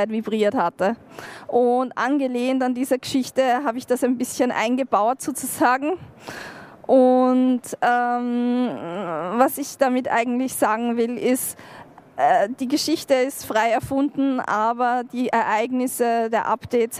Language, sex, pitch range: German, female, 235-270 Hz